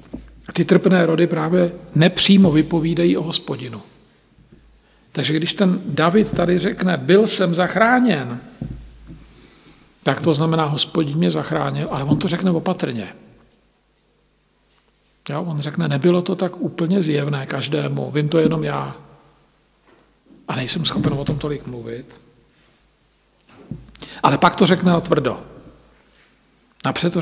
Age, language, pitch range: 50-69, Slovak, 150-190 Hz